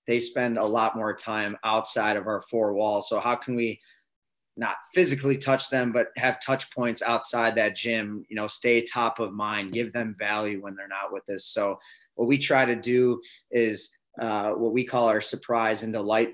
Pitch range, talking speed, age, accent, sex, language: 110-125 Hz, 200 wpm, 20-39, American, male, English